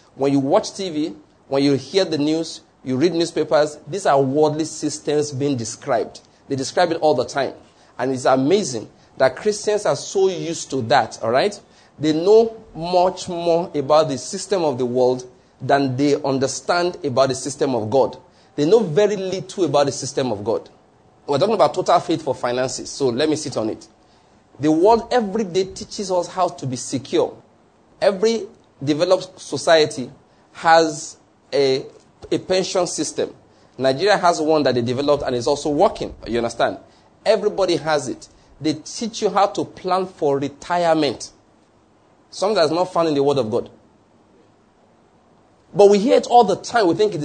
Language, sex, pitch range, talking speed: English, male, 140-195 Hz, 175 wpm